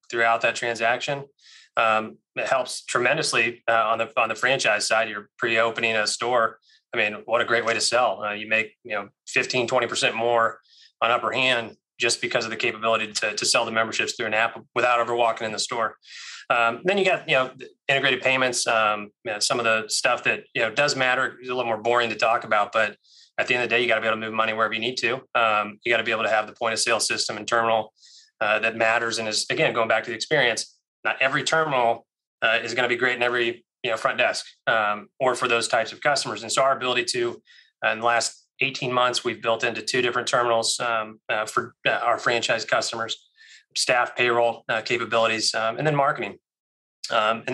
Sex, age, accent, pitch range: male, 20-39, American, 115-130 Hz